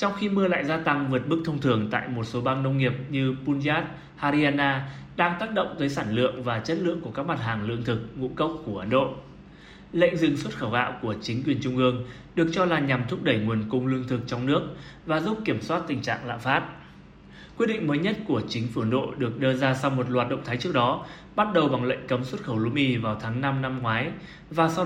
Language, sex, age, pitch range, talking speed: Vietnamese, male, 20-39, 125-165 Hz, 250 wpm